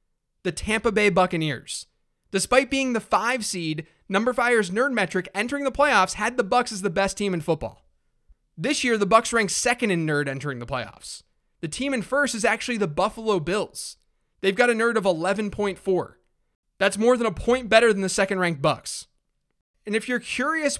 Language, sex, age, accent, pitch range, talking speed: English, male, 20-39, American, 180-240 Hz, 190 wpm